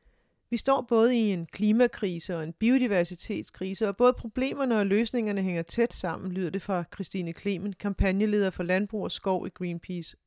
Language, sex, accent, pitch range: Danish, female, native, 180-225 Hz